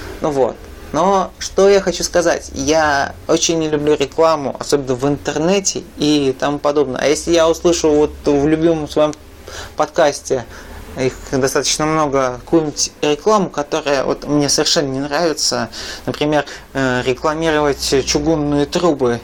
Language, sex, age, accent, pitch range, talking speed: Russian, male, 20-39, native, 135-170 Hz, 130 wpm